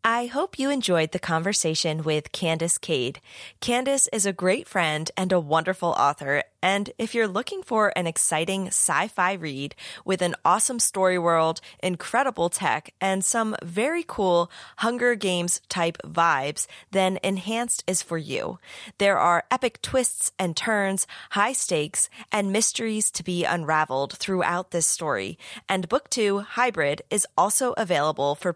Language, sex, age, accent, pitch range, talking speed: English, female, 20-39, American, 165-225 Hz, 150 wpm